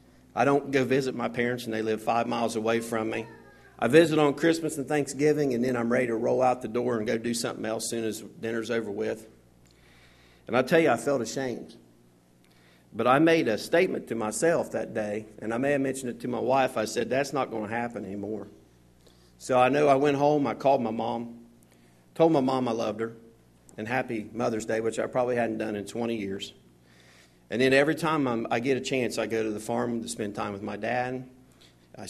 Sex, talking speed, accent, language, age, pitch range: male, 225 wpm, American, English, 50-69, 110-140 Hz